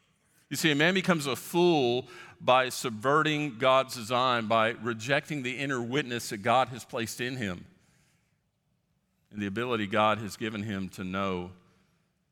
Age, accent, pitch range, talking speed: 50-69, American, 115-155 Hz, 150 wpm